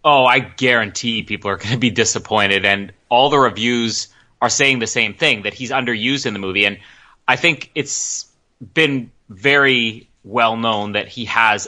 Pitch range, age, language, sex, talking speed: 110-135 Hz, 30-49, English, male, 180 wpm